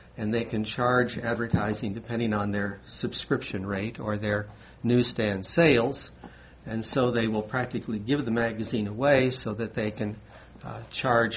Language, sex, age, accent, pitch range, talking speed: English, male, 60-79, American, 105-120 Hz, 155 wpm